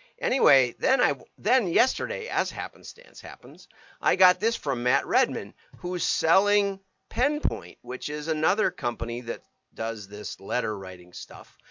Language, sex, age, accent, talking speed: English, male, 50-69, American, 135 wpm